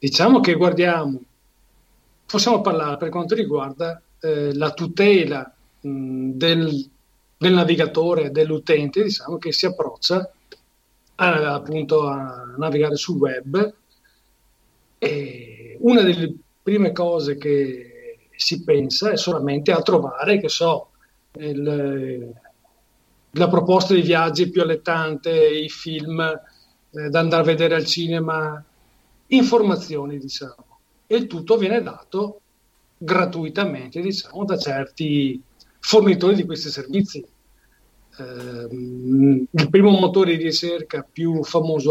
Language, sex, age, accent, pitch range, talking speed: Italian, male, 40-59, native, 140-175 Hz, 105 wpm